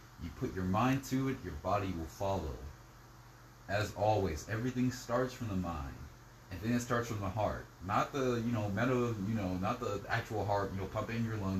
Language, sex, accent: English, male, American